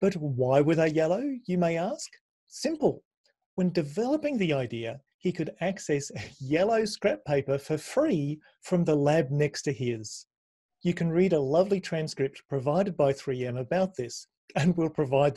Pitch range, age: 135-180 Hz, 40-59